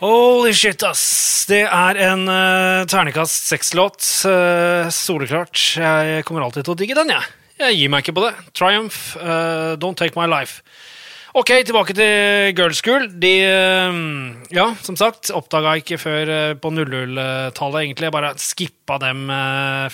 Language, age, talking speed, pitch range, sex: English, 20-39, 155 wpm, 145-185 Hz, male